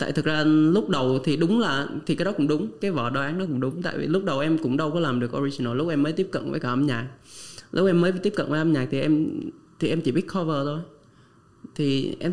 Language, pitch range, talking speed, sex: Vietnamese, 130-165 Hz, 280 wpm, male